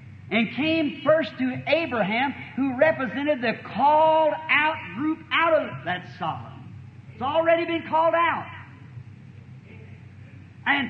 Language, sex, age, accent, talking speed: English, male, 50-69, American, 110 wpm